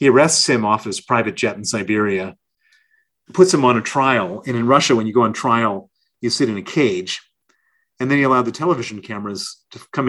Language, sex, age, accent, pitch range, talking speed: English, male, 40-59, American, 110-130 Hz, 215 wpm